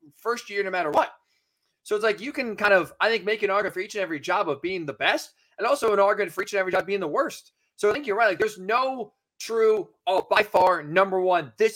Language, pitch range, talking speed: English, 165-215 Hz, 270 wpm